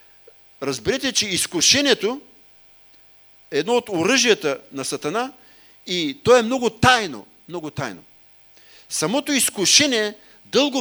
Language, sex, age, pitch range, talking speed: English, male, 50-69, 140-215 Hz, 100 wpm